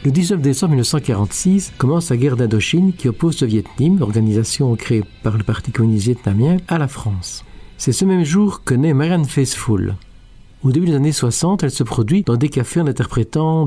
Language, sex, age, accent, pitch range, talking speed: French, male, 50-69, French, 115-160 Hz, 190 wpm